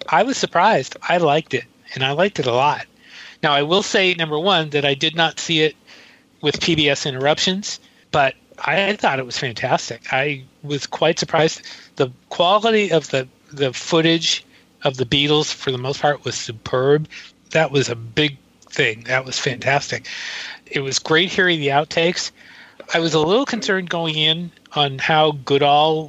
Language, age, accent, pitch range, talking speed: English, 40-59, American, 135-165 Hz, 175 wpm